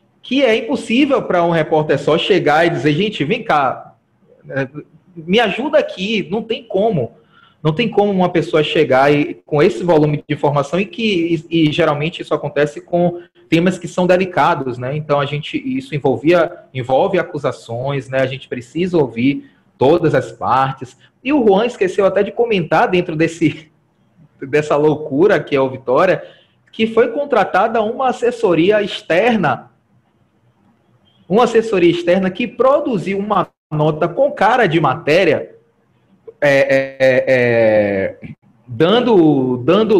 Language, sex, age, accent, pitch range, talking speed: Portuguese, male, 20-39, Brazilian, 155-225 Hz, 140 wpm